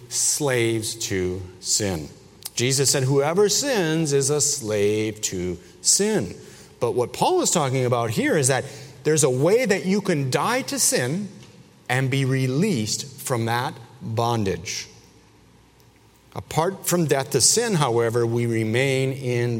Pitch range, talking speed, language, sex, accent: 110-155 Hz, 140 wpm, English, male, American